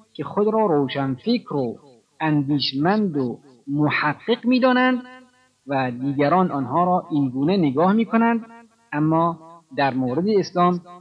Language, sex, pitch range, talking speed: Persian, male, 135-205 Hz, 130 wpm